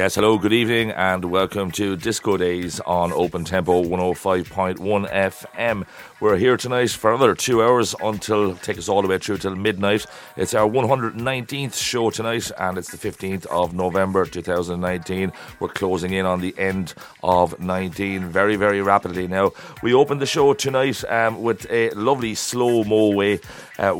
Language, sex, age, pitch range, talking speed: English, male, 30-49, 95-110 Hz, 165 wpm